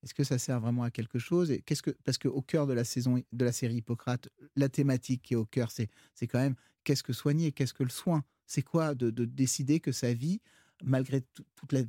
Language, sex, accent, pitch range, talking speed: French, male, French, 130-155 Hz, 245 wpm